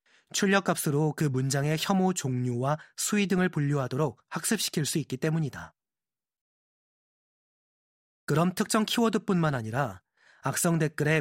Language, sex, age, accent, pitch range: Korean, male, 30-49, native, 135-180 Hz